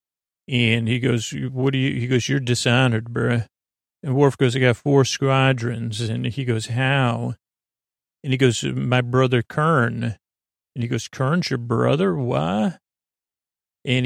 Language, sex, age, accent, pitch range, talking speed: English, male, 40-59, American, 115-130 Hz, 155 wpm